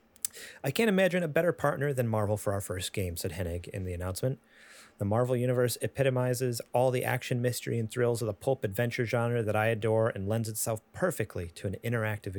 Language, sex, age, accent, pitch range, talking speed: English, male, 30-49, American, 100-120 Hz, 205 wpm